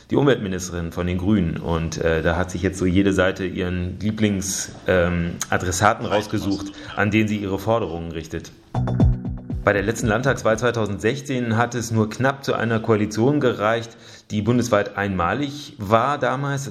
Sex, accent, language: male, German, German